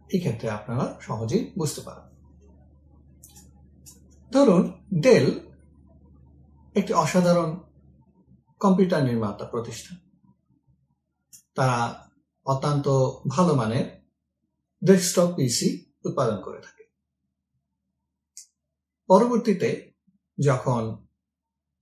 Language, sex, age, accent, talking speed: Bengali, male, 50-69, native, 50 wpm